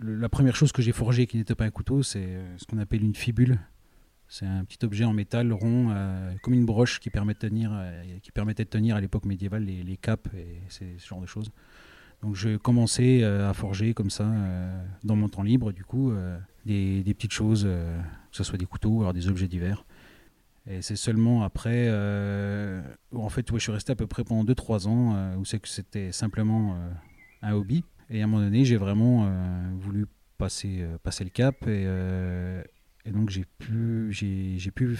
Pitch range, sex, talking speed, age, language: 95-115 Hz, male, 210 wpm, 30-49, French